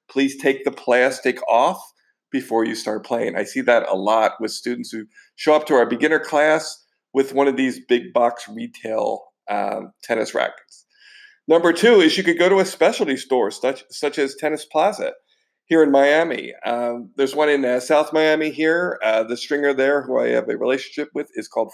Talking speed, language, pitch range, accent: 195 wpm, English, 130-165 Hz, American